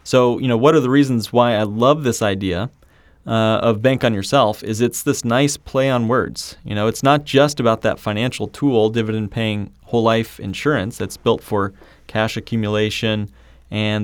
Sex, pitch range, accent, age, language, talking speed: male, 105-125 Hz, American, 30-49, English, 190 wpm